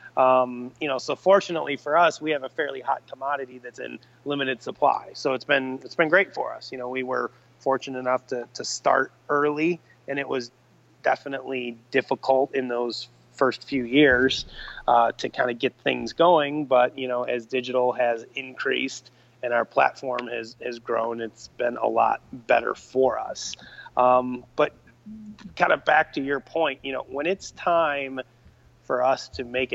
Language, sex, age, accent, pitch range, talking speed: English, male, 30-49, American, 125-140 Hz, 180 wpm